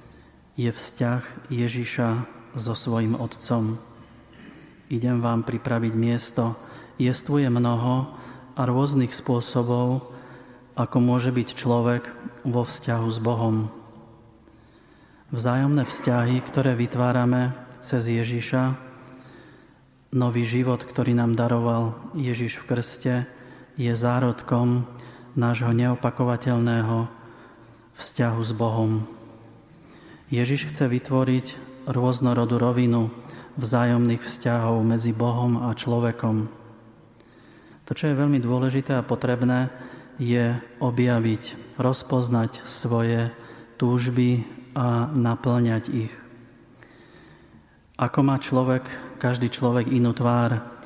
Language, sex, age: Slovak, male, 30-49